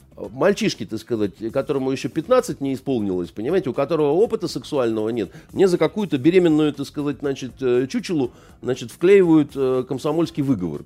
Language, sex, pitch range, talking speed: Russian, male, 125-175 Hz, 140 wpm